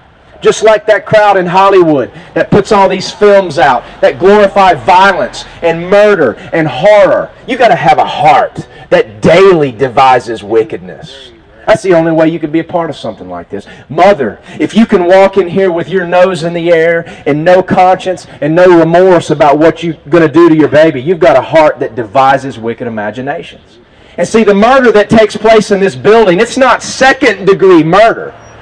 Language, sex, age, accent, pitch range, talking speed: English, male, 40-59, American, 165-215 Hz, 195 wpm